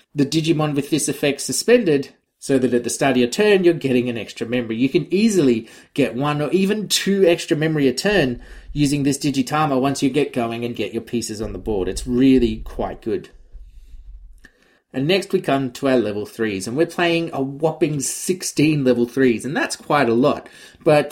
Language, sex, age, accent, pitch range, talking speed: English, male, 30-49, Australian, 120-165 Hz, 200 wpm